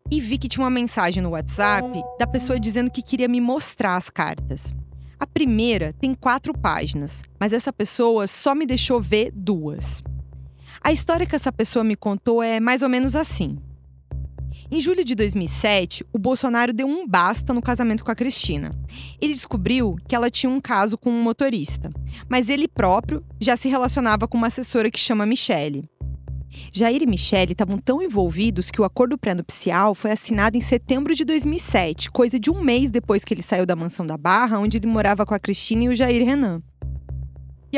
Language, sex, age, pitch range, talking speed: Portuguese, female, 20-39, 175-250 Hz, 185 wpm